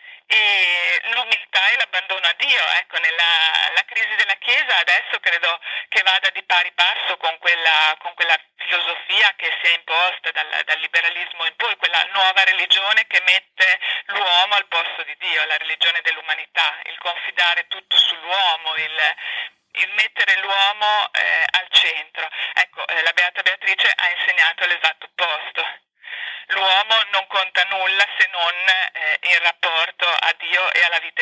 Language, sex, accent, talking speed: Italian, female, native, 155 wpm